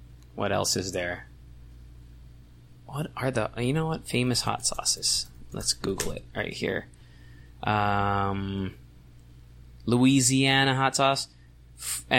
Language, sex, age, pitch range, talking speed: English, male, 20-39, 90-135 Hz, 110 wpm